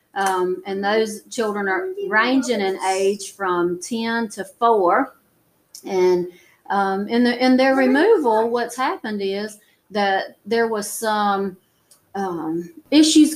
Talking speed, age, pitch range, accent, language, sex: 125 wpm, 40-59, 180-230 Hz, American, English, female